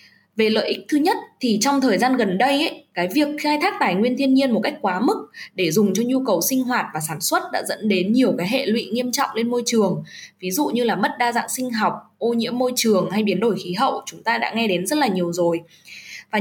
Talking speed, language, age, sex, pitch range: 270 wpm, Vietnamese, 10-29, female, 190-265 Hz